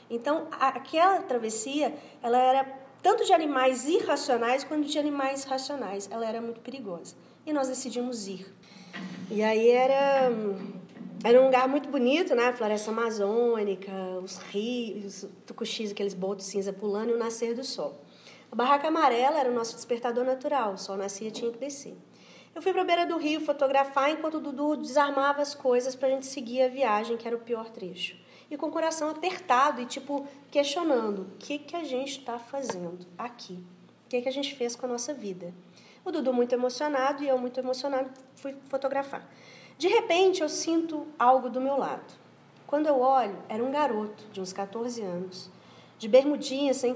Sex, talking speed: female, 185 wpm